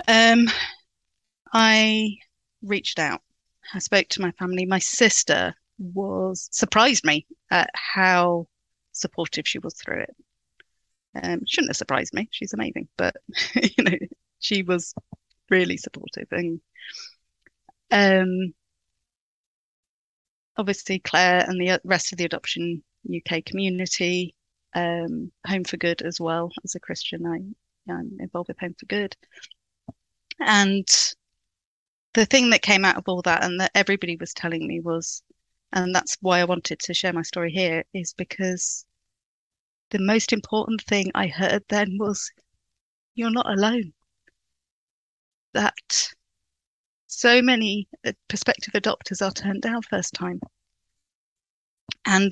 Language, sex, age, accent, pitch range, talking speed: English, female, 30-49, British, 175-210 Hz, 130 wpm